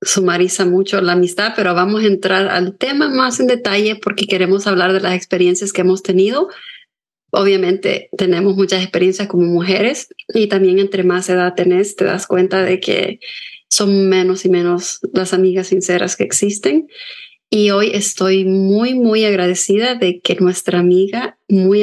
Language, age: Spanish, 30-49